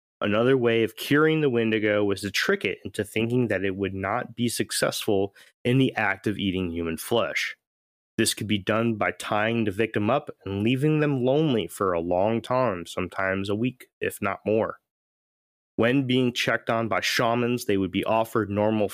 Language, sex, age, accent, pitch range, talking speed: English, male, 30-49, American, 100-135 Hz, 185 wpm